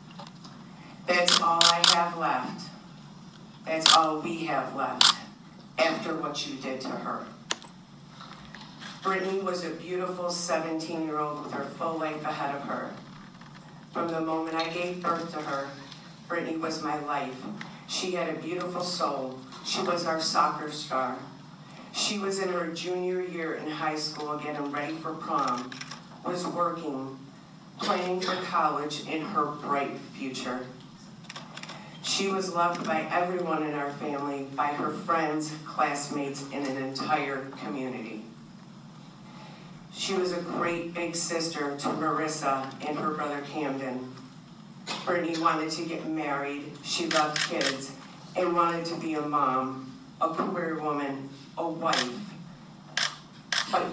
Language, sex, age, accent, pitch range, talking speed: English, female, 50-69, American, 145-175 Hz, 135 wpm